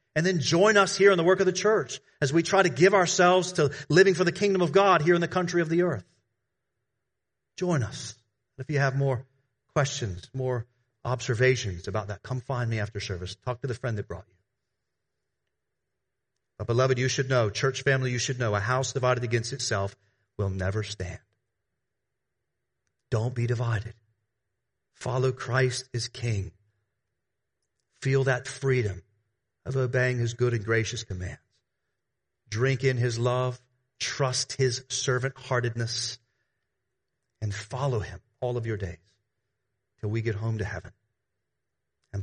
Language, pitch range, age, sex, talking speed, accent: English, 105-135 Hz, 40-59, male, 160 wpm, American